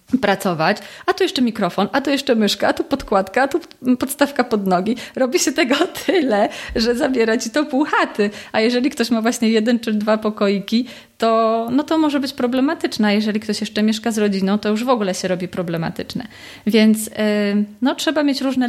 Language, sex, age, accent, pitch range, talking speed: Polish, female, 30-49, native, 190-230 Hz, 195 wpm